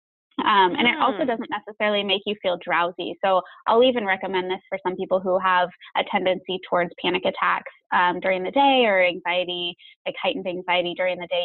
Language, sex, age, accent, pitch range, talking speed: English, female, 20-39, American, 175-210 Hz, 195 wpm